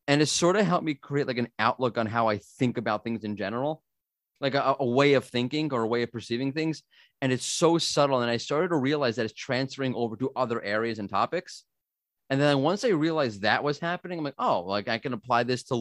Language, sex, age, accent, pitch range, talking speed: English, male, 30-49, American, 115-145 Hz, 245 wpm